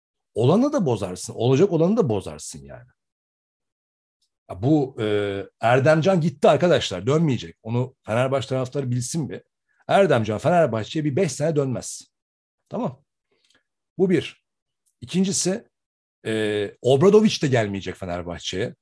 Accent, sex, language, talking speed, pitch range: native, male, Turkish, 100 wpm, 115-165 Hz